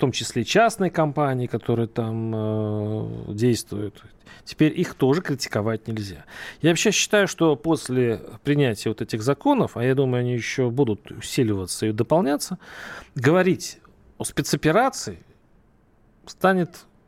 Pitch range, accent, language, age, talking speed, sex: 115-160 Hz, native, Russian, 40-59, 125 wpm, male